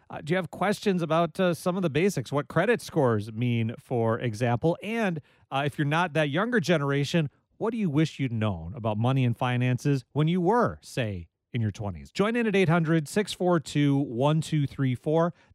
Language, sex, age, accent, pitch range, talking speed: English, male, 40-59, American, 125-165 Hz, 180 wpm